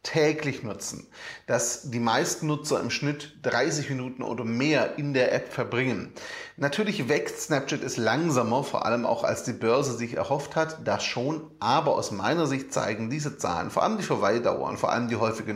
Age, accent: 30-49, German